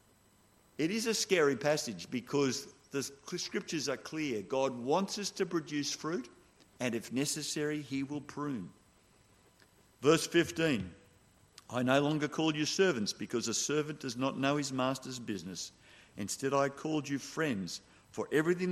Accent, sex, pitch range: Australian, male, 110-150 Hz